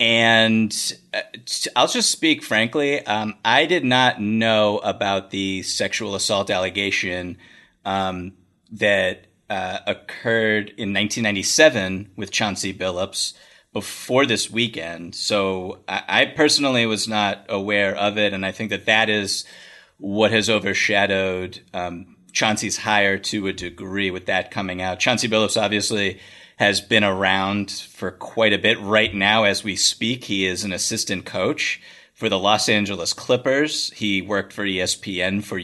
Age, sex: 30-49, male